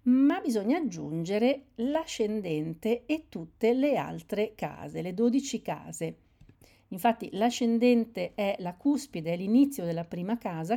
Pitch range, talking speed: 170-235 Hz, 125 wpm